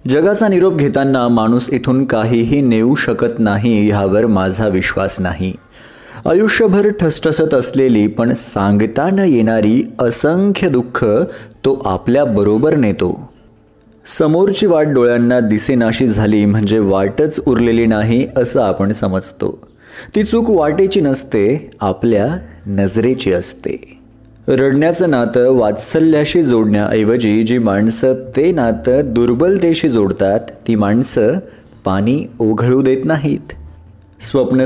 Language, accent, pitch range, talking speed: Marathi, native, 105-145 Hz, 105 wpm